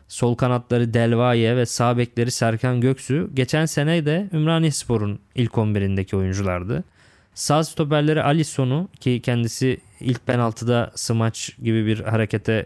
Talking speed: 120 wpm